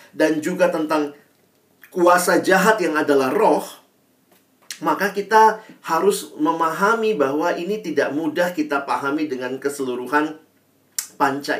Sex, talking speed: male, 110 wpm